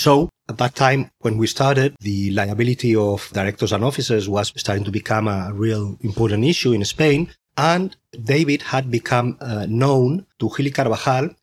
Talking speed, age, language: 170 wpm, 30-49, English